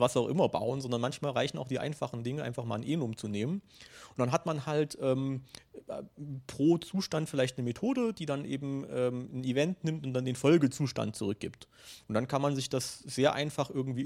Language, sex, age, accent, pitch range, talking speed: German, male, 40-59, German, 120-145 Hz, 215 wpm